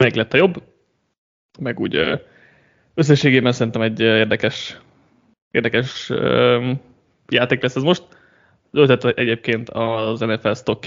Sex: male